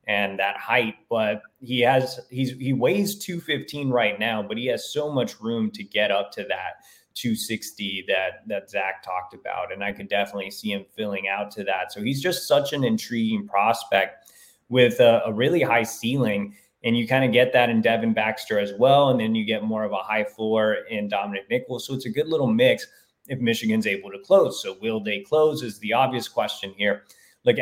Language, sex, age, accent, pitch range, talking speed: English, male, 20-39, American, 110-150 Hz, 205 wpm